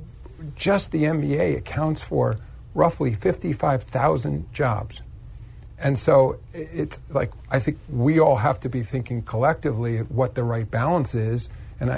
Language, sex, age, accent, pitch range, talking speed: English, male, 50-69, American, 115-135 Hz, 140 wpm